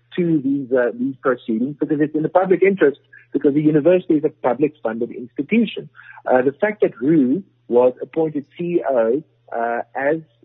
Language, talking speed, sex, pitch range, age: English, 160 wpm, female, 120-160 Hz, 50-69